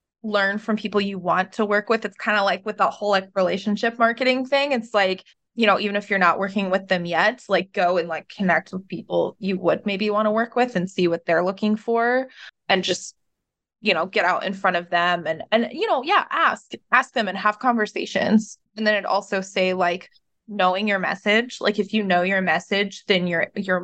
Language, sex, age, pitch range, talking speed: English, female, 20-39, 180-210 Hz, 225 wpm